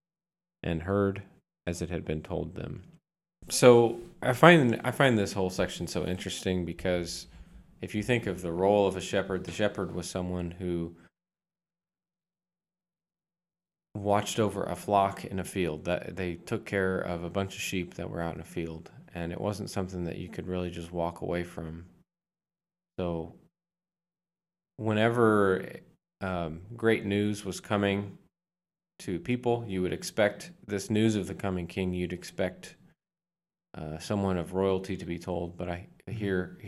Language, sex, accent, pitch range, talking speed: English, male, American, 85-125 Hz, 160 wpm